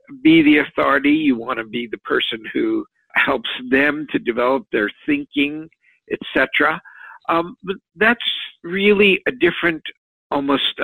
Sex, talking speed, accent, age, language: male, 120 wpm, American, 60-79, English